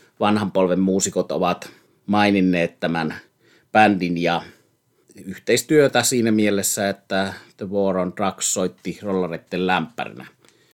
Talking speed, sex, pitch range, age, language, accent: 105 wpm, male, 90-115 Hz, 30-49, Finnish, native